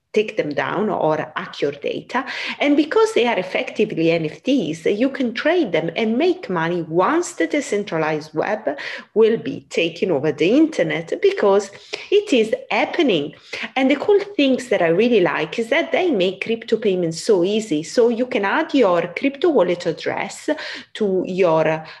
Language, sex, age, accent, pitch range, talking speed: English, female, 30-49, Italian, 185-300 Hz, 165 wpm